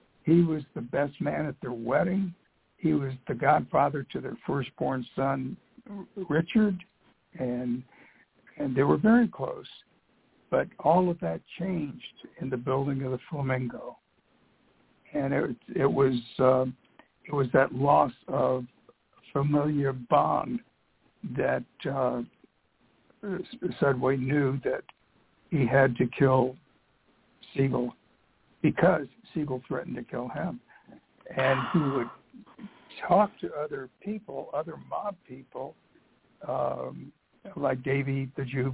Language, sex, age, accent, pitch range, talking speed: English, male, 60-79, American, 130-175 Hz, 120 wpm